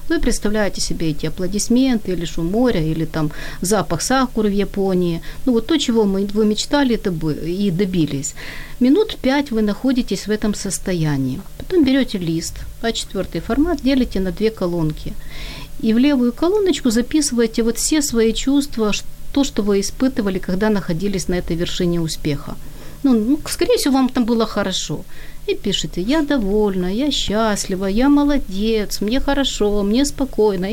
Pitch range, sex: 180-255 Hz, female